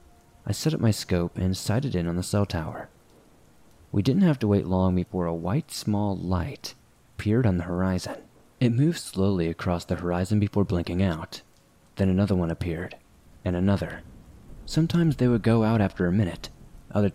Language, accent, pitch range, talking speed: English, American, 90-105 Hz, 180 wpm